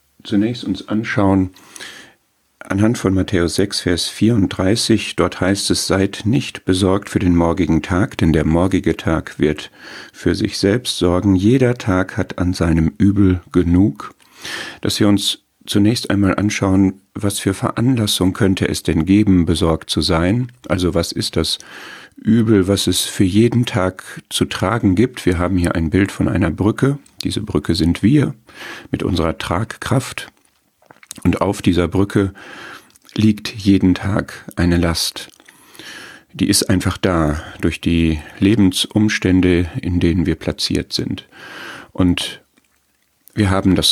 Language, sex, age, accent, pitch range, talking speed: German, male, 50-69, German, 90-105 Hz, 140 wpm